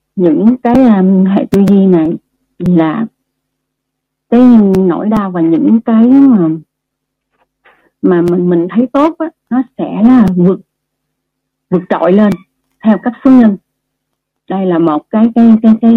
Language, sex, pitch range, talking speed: Vietnamese, female, 170-240 Hz, 145 wpm